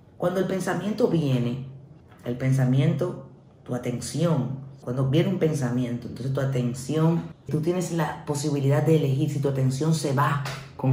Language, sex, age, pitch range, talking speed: Spanish, female, 40-59, 135-170 Hz, 150 wpm